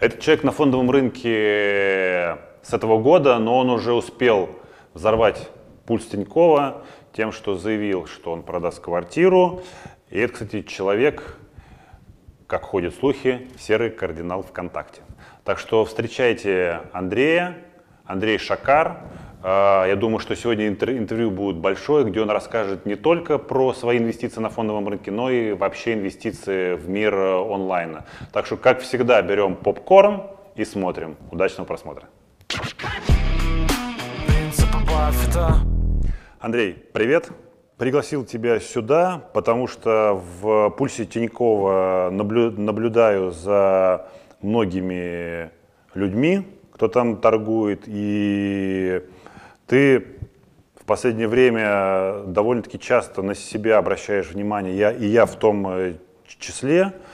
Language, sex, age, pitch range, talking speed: Russian, male, 20-39, 95-125 Hz, 110 wpm